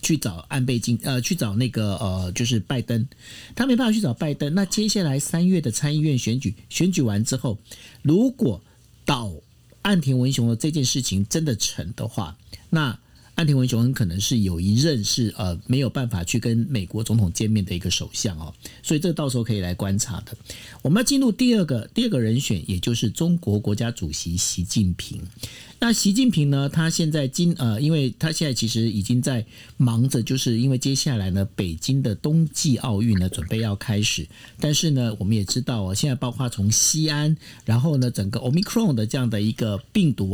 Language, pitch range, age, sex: Chinese, 105-150 Hz, 50-69, male